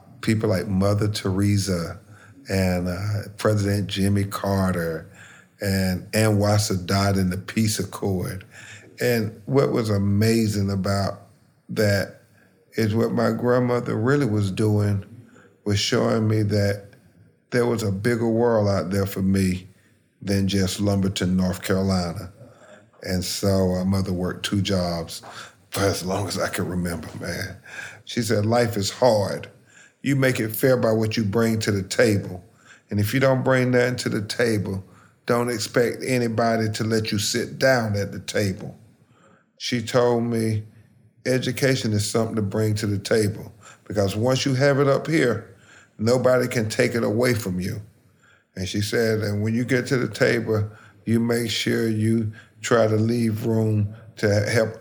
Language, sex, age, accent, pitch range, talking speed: English, male, 40-59, American, 100-115 Hz, 160 wpm